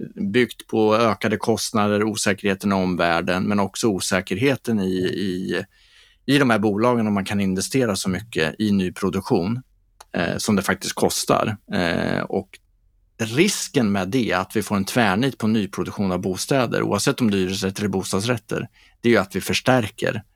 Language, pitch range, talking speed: Swedish, 95-115 Hz, 160 wpm